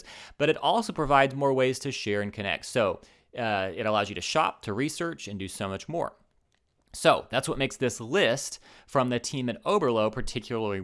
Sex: male